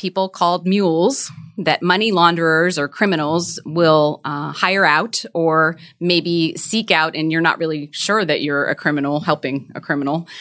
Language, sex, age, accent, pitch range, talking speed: English, female, 30-49, American, 155-190 Hz, 160 wpm